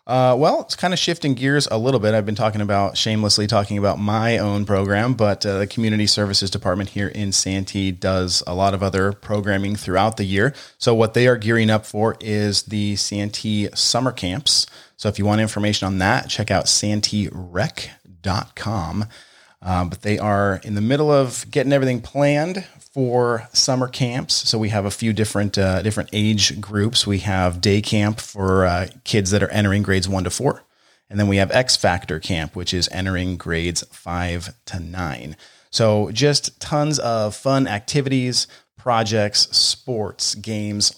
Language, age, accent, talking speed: English, 30-49, American, 175 wpm